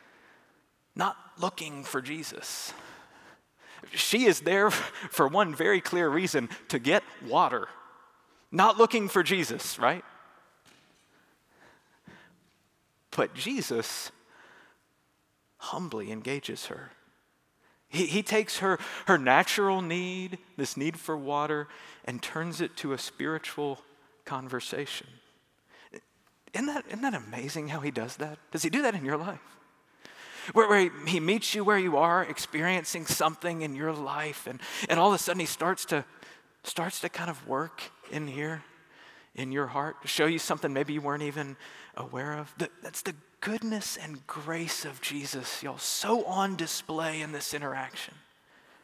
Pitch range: 145-200 Hz